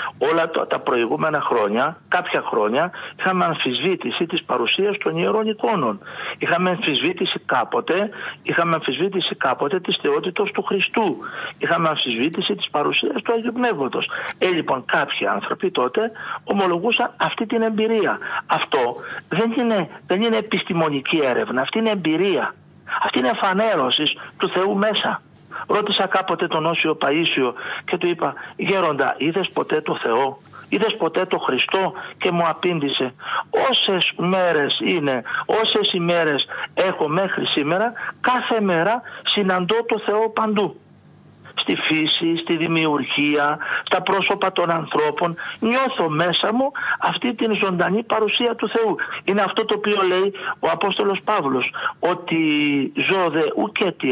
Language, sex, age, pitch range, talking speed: Greek, male, 60-79, 165-220 Hz, 130 wpm